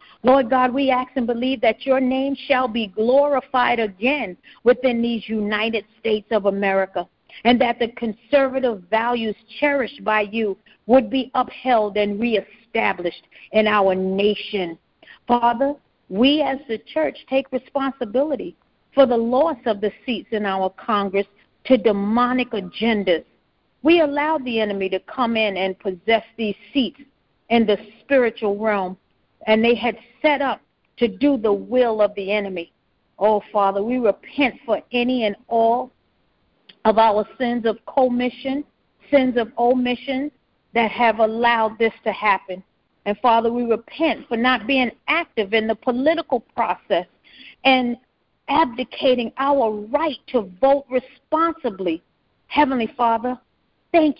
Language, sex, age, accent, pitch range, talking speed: English, female, 50-69, American, 215-265 Hz, 140 wpm